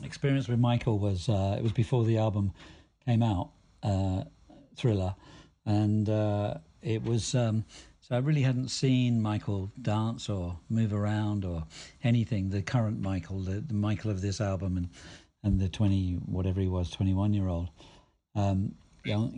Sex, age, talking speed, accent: male, 50-69, 160 wpm, British